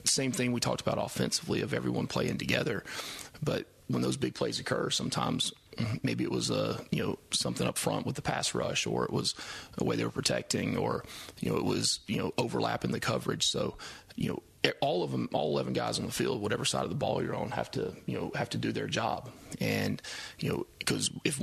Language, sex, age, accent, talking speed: English, male, 30-49, American, 230 wpm